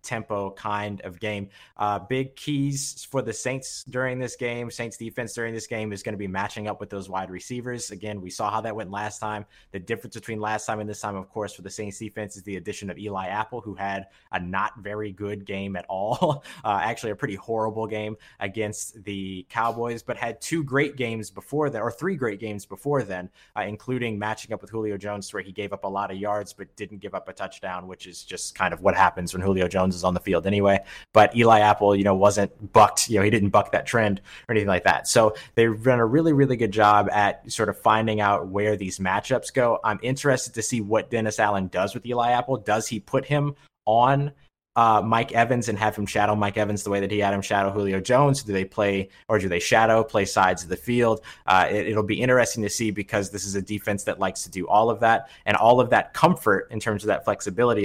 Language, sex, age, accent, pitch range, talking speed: English, male, 20-39, American, 100-115 Hz, 240 wpm